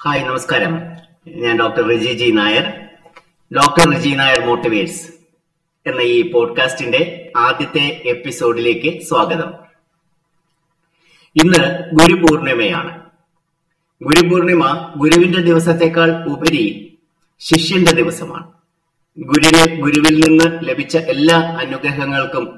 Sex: male